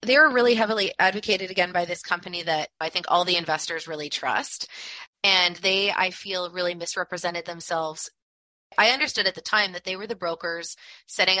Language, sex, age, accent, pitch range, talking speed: English, female, 20-39, American, 160-185 Hz, 185 wpm